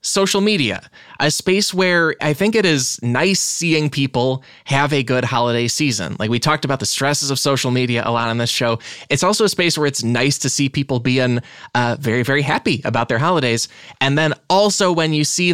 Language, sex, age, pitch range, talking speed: English, male, 20-39, 115-155 Hz, 210 wpm